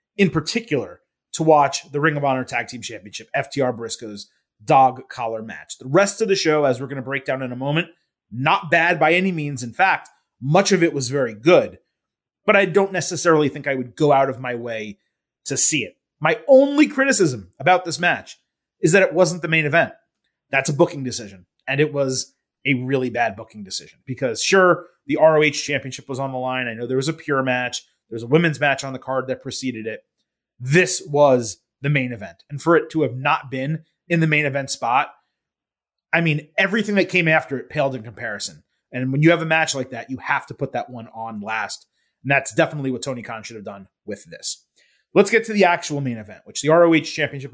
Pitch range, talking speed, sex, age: 130-165 Hz, 220 wpm, male, 30-49